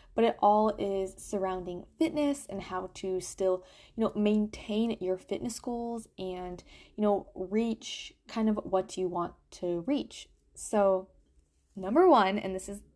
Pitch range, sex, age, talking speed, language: 185-230 Hz, female, 10-29, 155 wpm, English